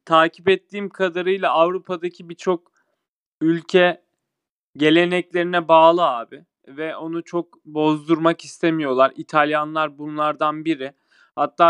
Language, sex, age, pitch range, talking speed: Turkish, male, 30-49, 155-180 Hz, 90 wpm